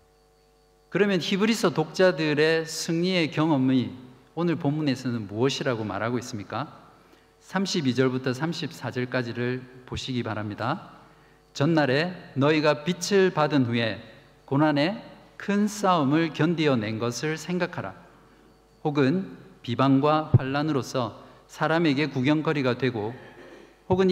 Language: Korean